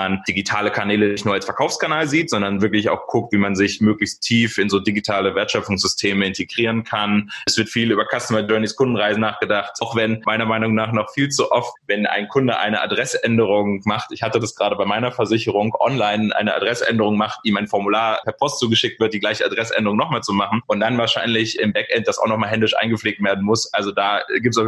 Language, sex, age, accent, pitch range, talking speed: German, male, 20-39, German, 105-115 Hz, 210 wpm